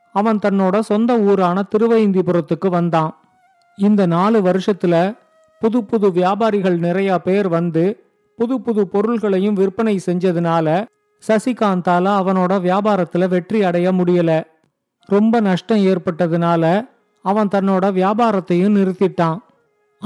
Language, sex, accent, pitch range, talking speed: Tamil, male, native, 180-215 Hz, 100 wpm